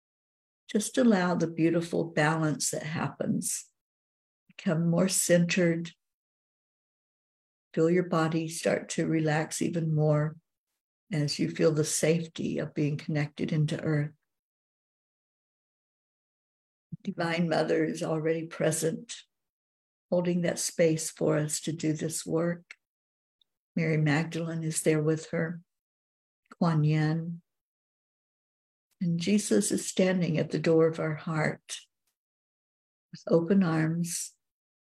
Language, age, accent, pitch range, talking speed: English, 60-79, American, 155-180 Hz, 110 wpm